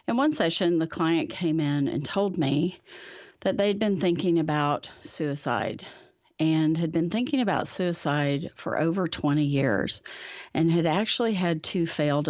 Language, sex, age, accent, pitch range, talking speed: English, female, 40-59, American, 145-175 Hz, 155 wpm